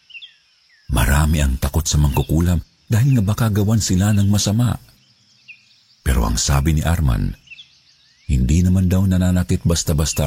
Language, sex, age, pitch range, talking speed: Filipino, male, 50-69, 80-115 Hz, 130 wpm